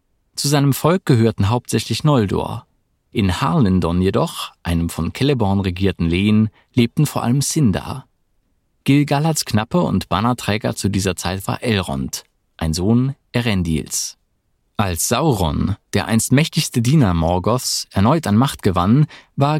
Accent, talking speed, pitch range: German, 130 wpm, 95-135 Hz